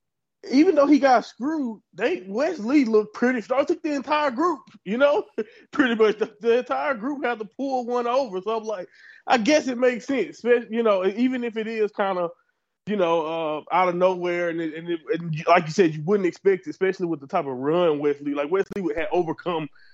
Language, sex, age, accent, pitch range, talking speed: English, male, 20-39, American, 180-250 Hz, 220 wpm